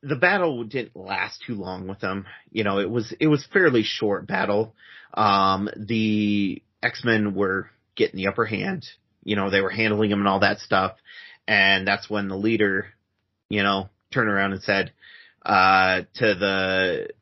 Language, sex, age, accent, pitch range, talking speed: English, male, 30-49, American, 95-110 Hz, 170 wpm